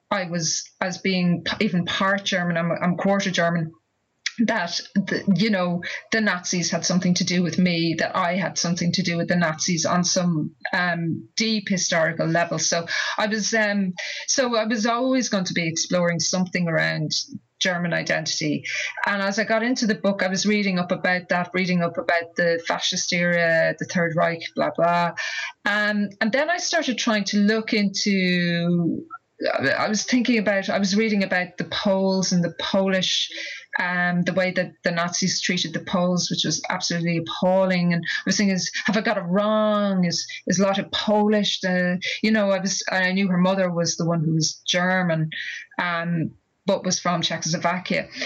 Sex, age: female, 30-49